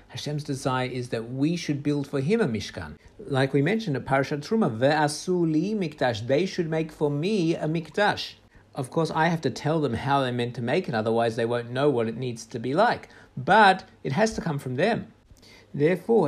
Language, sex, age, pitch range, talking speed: English, male, 50-69, 125-165 Hz, 205 wpm